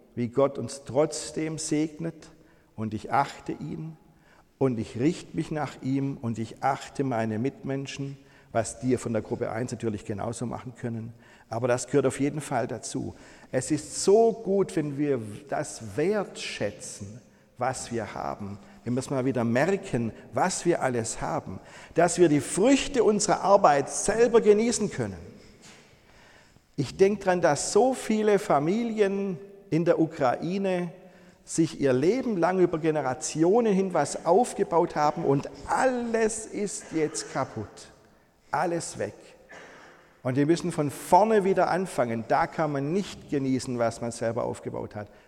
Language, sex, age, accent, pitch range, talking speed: German, male, 50-69, German, 125-175 Hz, 145 wpm